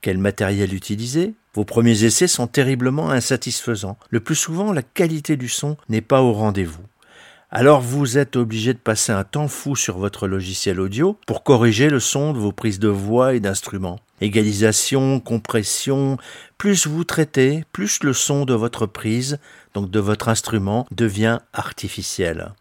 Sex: male